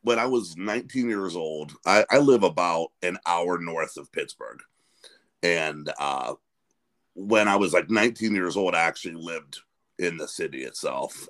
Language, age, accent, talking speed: English, 50-69, American, 165 wpm